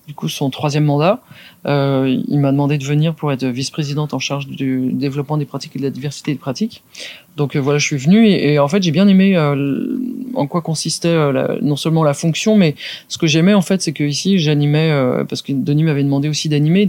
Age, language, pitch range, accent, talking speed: 30-49, French, 140-170 Hz, French, 240 wpm